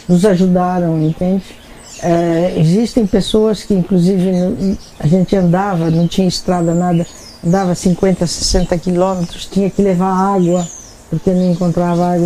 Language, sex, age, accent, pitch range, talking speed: Portuguese, female, 60-79, Brazilian, 180-215 Hz, 130 wpm